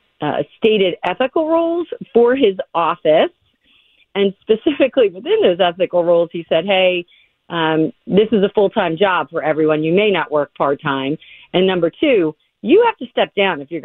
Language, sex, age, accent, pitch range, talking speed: English, female, 40-59, American, 155-205 Hz, 170 wpm